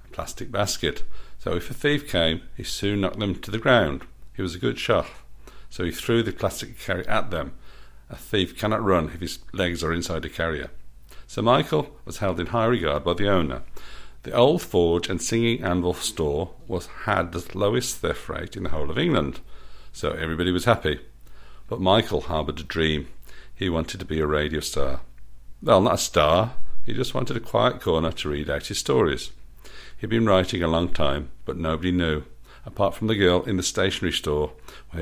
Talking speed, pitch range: 195 wpm, 75-95 Hz